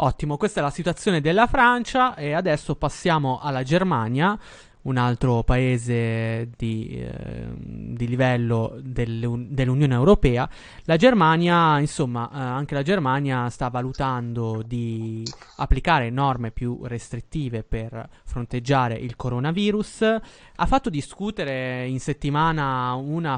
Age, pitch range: 20-39, 120-150 Hz